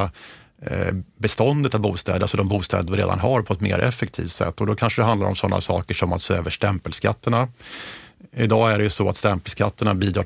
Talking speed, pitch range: 205 wpm, 95-110 Hz